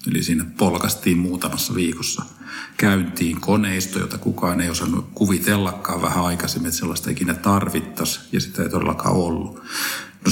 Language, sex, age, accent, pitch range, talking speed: Finnish, male, 50-69, native, 85-100 Hz, 140 wpm